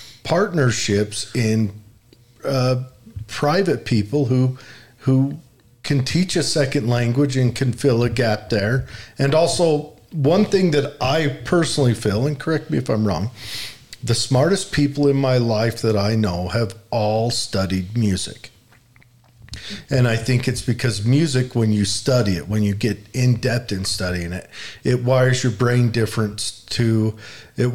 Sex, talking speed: male, 150 wpm